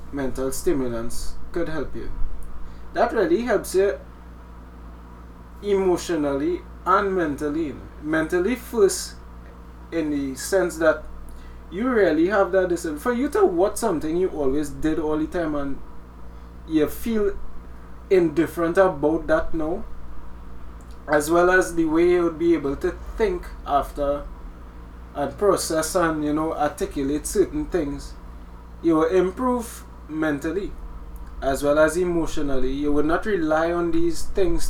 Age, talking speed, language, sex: 20-39, 130 wpm, English, male